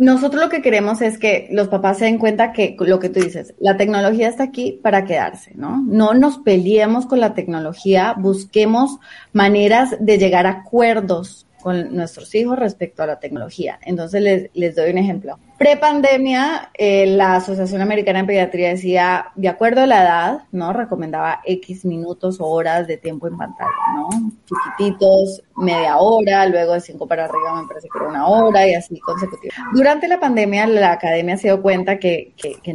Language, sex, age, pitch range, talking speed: Spanish, female, 30-49, 180-225 Hz, 185 wpm